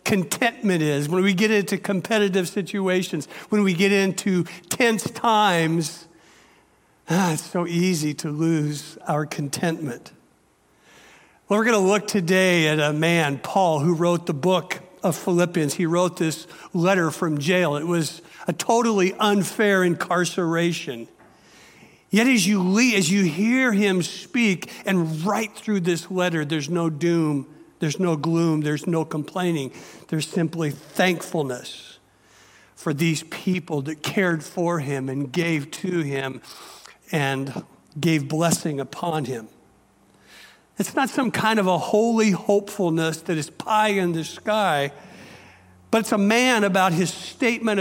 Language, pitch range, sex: English, 160-195 Hz, male